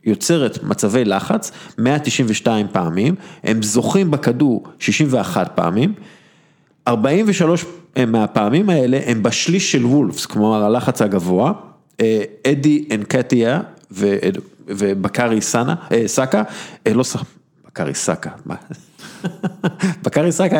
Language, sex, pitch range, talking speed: Hebrew, male, 115-165 Hz, 100 wpm